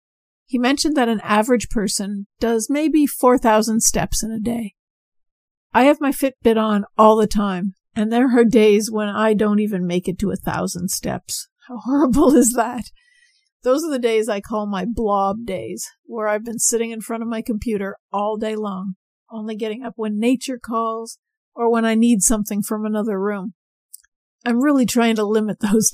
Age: 50-69